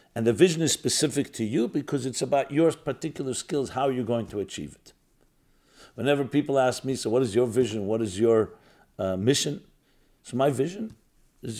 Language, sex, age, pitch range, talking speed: English, male, 50-69, 110-135 Hz, 190 wpm